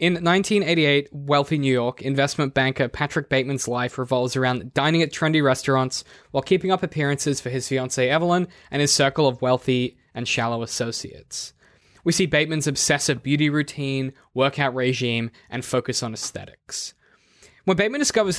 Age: 10-29